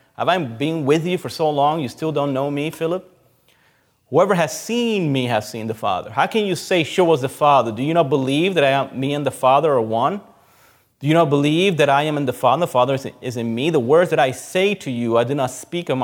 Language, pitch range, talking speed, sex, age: English, 120-150 Hz, 270 wpm, male, 30-49